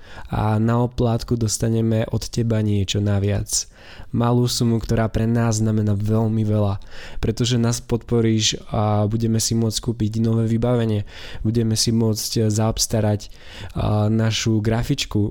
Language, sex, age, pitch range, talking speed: Slovak, male, 20-39, 105-115 Hz, 120 wpm